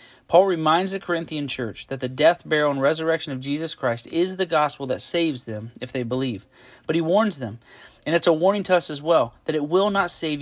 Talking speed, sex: 230 wpm, male